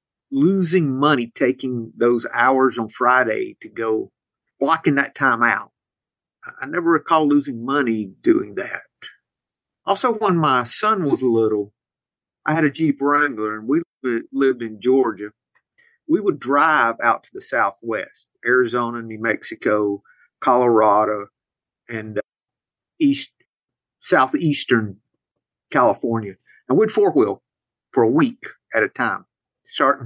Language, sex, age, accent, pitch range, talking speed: English, male, 50-69, American, 120-160 Hz, 120 wpm